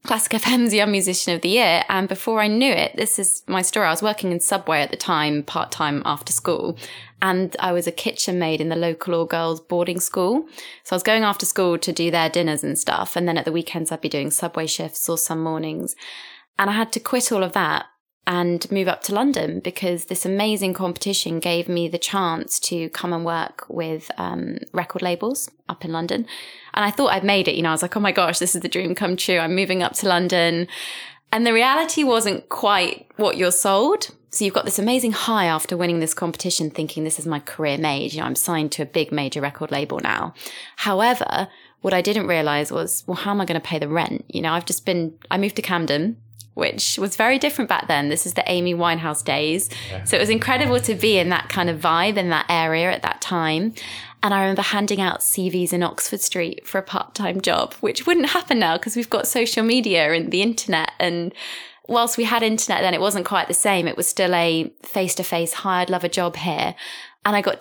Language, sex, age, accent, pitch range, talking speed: English, female, 20-39, British, 165-205 Hz, 230 wpm